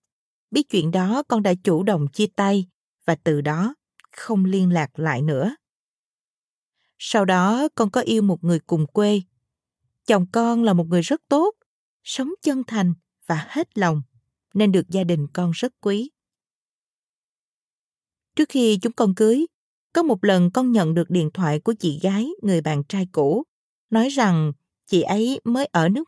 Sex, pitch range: female, 175-235 Hz